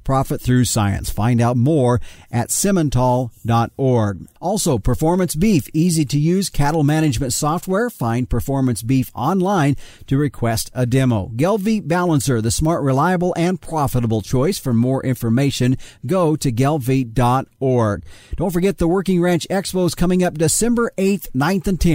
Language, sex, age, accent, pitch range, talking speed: English, male, 40-59, American, 125-160 Hz, 135 wpm